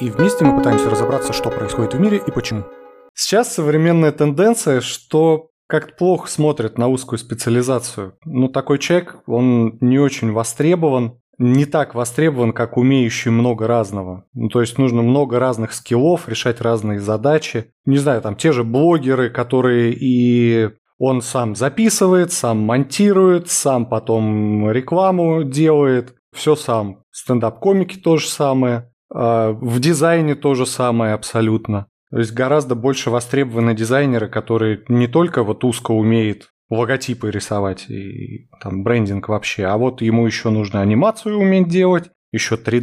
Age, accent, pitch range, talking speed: 20-39, native, 115-150 Hz, 140 wpm